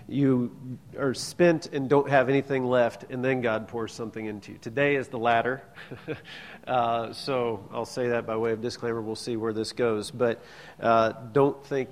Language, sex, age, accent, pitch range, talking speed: English, male, 40-59, American, 110-130 Hz, 185 wpm